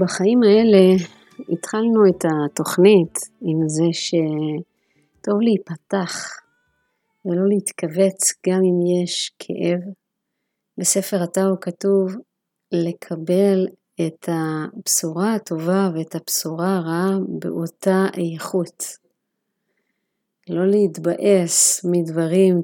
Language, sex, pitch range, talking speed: Hebrew, female, 170-195 Hz, 80 wpm